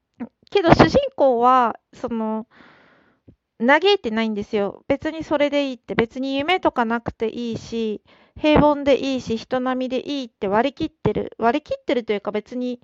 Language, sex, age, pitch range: Japanese, female, 50-69, 225-290 Hz